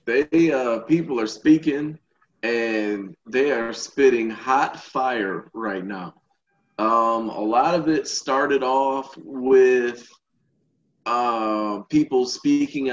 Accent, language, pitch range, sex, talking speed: American, English, 115-135 Hz, male, 110 wpm